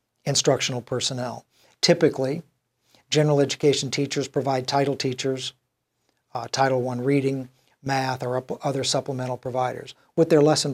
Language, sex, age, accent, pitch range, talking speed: English, male, 60-79, American, 130-155 Hz, 115 wpm